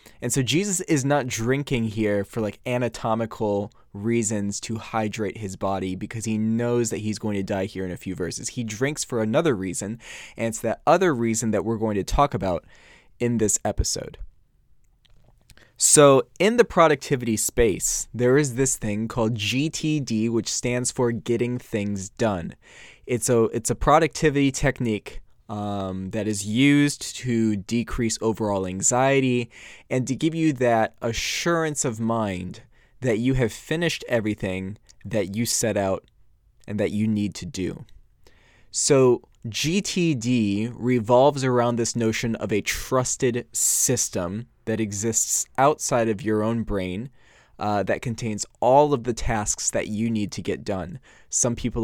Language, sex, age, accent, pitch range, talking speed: English, male, 20-39, American, 105-125 Hz, 155 wpm